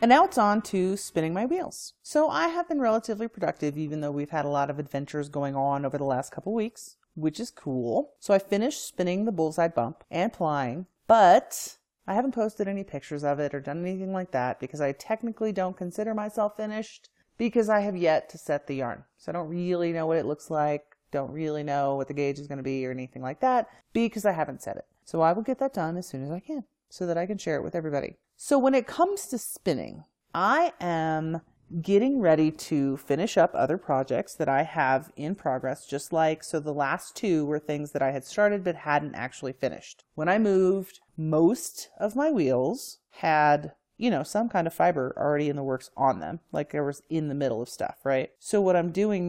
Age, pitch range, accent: 30-49, 145-210 Hz, American